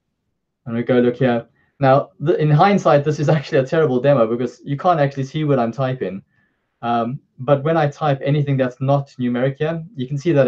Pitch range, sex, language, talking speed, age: 120-140 Hz, male, English, 205 wpm, 20-39